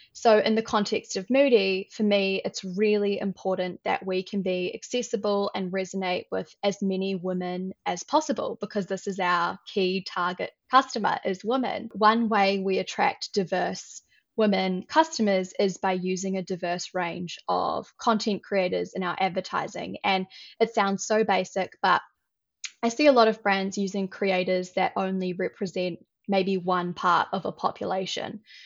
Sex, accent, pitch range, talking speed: female, Australian, 185-210 Hz, 155 wpm